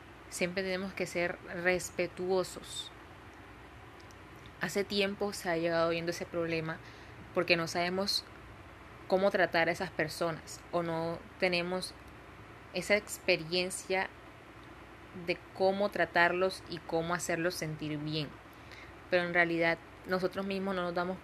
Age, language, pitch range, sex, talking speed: 20-39, Spanish, 170-190 Hz, female, 120 wpm